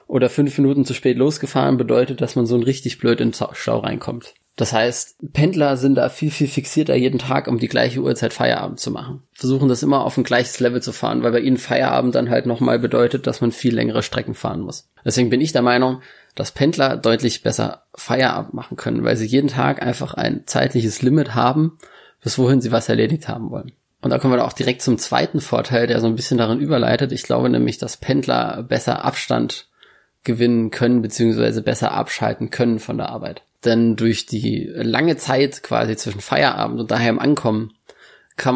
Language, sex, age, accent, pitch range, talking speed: German, male, 20-39, German, 115-130 Hz, 200 wpm